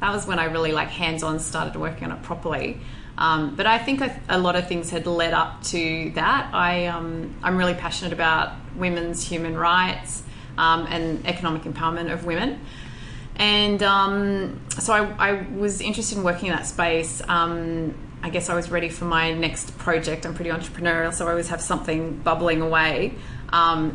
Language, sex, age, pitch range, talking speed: English, female, 20-39, 155-175 Hz, 185 wpm